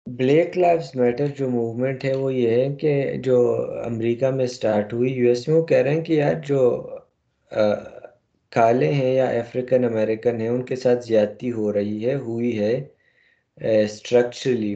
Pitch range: 110-130 Hz